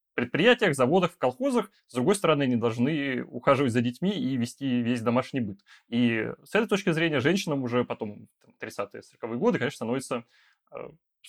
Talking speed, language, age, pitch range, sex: 170 wpm, Russian, 20-39, 115-155 Hz, male